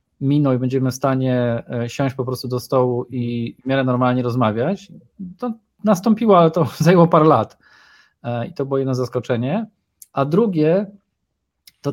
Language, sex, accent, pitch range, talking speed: Polish, male, native, 125-155 Hz, 150 wpm